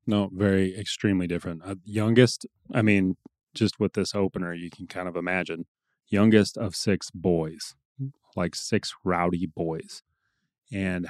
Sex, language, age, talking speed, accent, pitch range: male, English, 30-49, 140 wpm, American, 90-105 Hz